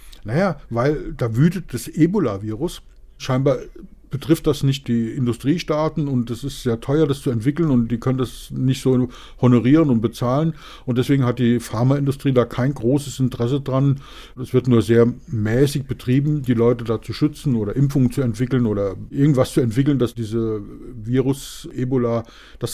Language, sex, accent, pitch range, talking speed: German, male, German, 120-155 Hz, 165 wpm